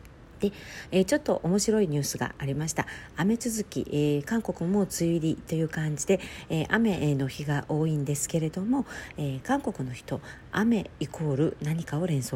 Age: 50-69